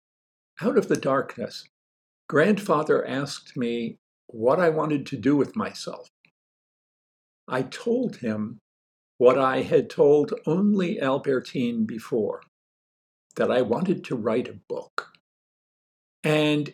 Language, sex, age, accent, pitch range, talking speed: English, male, 60-79, American, 120-160 Hz, 115 wpm